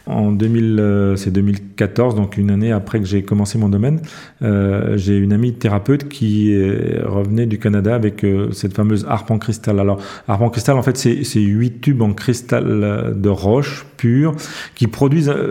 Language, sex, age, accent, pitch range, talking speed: French, male, 40-59, French, 100-120 Hz, 175 wpm